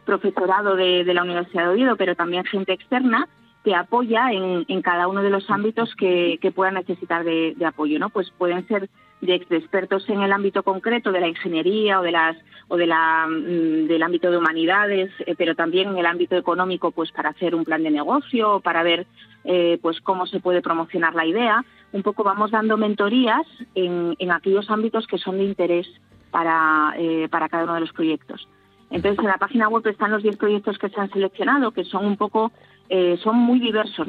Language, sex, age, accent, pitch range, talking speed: Spanish, female, 30-49, Spanish, 170-200 Hz, 200 wpm